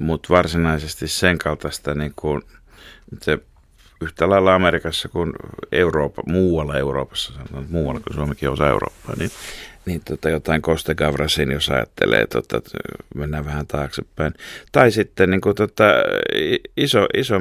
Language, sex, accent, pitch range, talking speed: Finnish, male, native, 80-105 Hz, 130 wpm